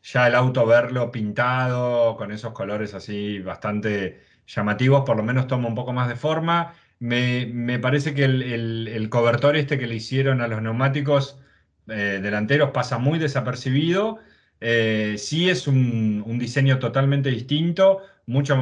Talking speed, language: 160 wpm, Spanish